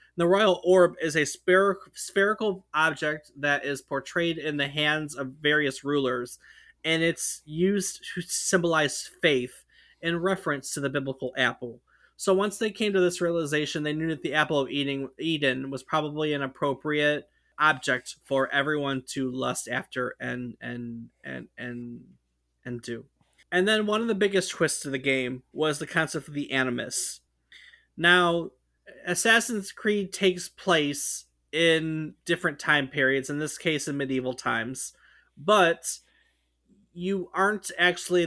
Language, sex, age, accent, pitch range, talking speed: English, male, 20-39, American, 135-170 Hz, 145 wpm